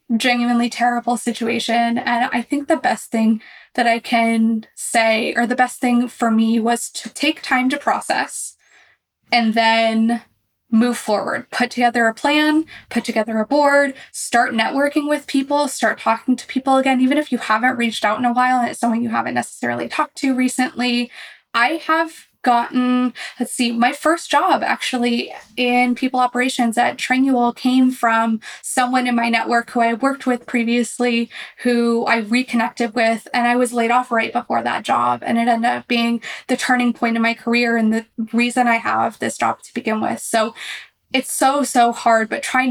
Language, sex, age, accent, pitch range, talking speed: English, female, 20-39, American, 230-255 Hz, 185 wpm